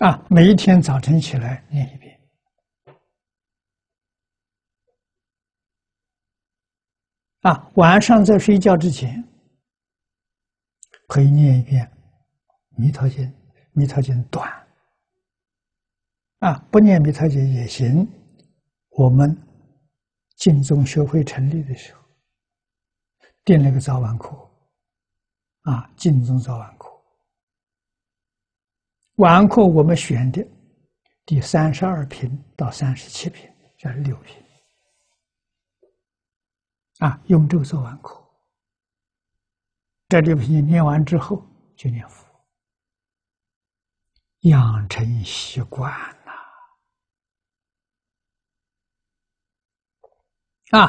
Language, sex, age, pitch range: Chinese, male, 60-79, 100-160 Hz